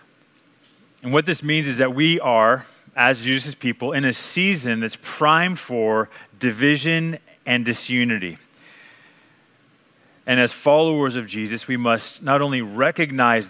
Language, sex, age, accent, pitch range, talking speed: English, male, 30-49, American, 120-145 Hz, 135 wpm